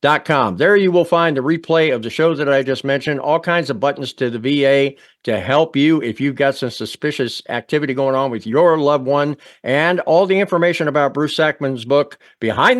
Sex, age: male, 50-69